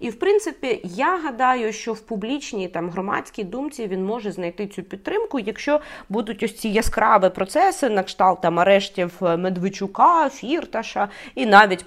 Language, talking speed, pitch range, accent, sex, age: Ukrainian, 150 wpm, 180-230 Hz, native, female, 30-49